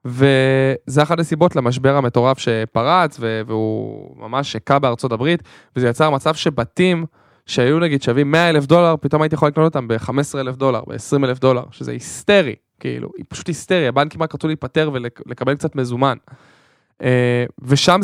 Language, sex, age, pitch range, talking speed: Hebrew, male, 10-29, 125-155 Hz, 150 wpm